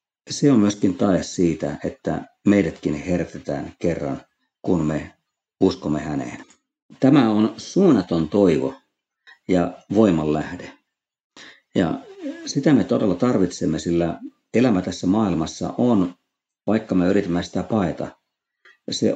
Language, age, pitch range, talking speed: Finnish, 50-69, 75-100 Hz, 115 wpm